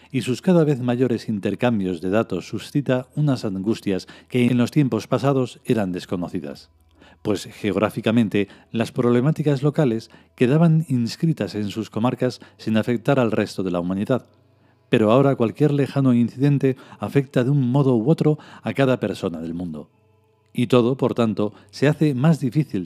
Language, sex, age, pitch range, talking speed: Spanish, male, 40-59, 100-130 Hz, 155 wpm